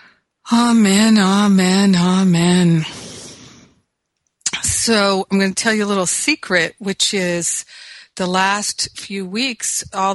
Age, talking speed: 50-69, 110 wpm